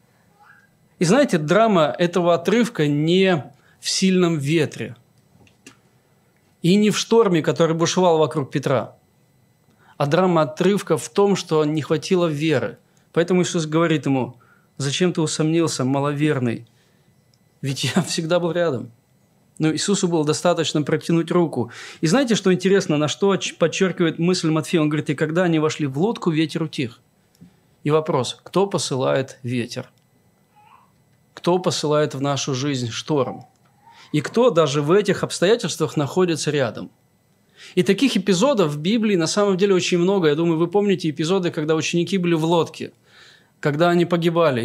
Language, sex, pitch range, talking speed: Russian, male, 150-185 Hz, 140 wpm